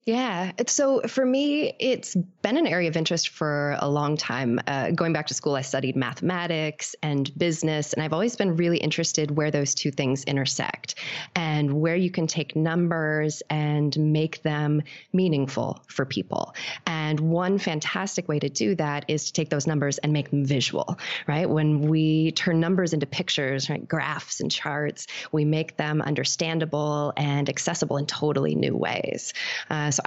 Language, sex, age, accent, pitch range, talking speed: English, female, 20-39, American, 145-170 Hz, 170 wpm